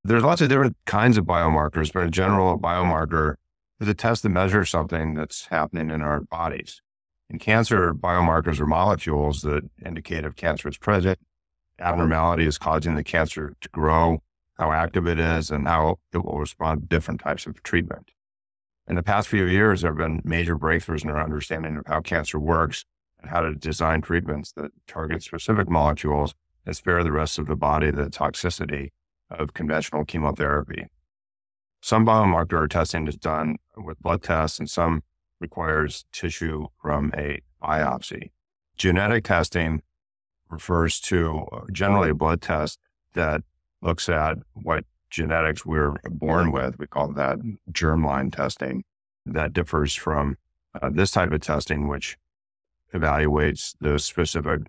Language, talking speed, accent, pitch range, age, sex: English, 155 wpm, American, 75-85 Hz, 50-69, male